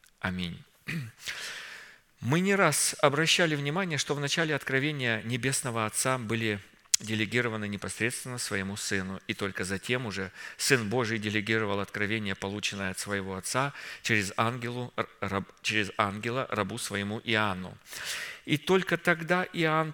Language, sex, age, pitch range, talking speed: Russian, male, 50-69, 105-135 Hz, 125 wpm